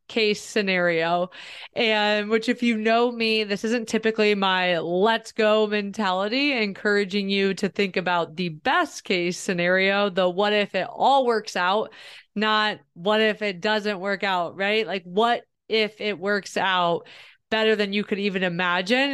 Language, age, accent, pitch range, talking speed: English, 20-39, American, 185-225 Hz, 160 wpm